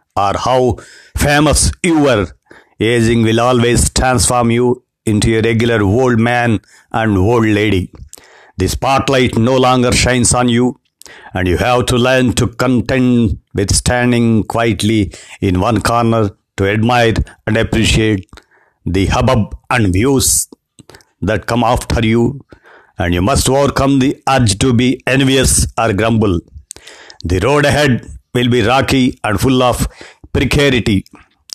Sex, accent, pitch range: male, native, 105-125 Hz